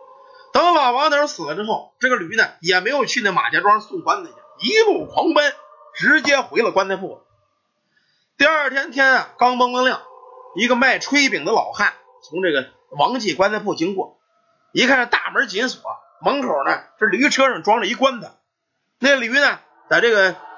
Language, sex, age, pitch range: Chinese, male, 30-49, 250-390 Hz